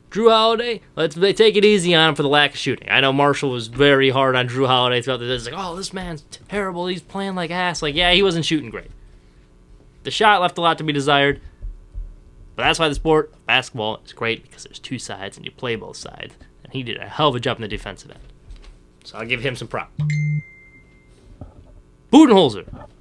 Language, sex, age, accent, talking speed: English, male, 20-39, American, 215 wpm